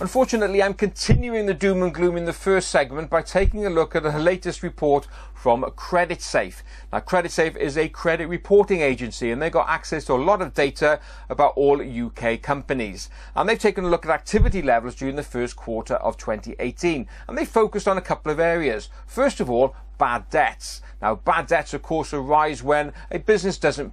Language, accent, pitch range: English, British, 125-170 Hz